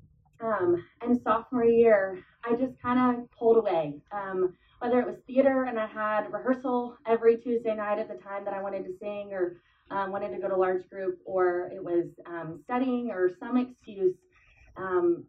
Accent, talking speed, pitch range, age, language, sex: American, 185 wpm, 165-230 Hz, 20-39, English, female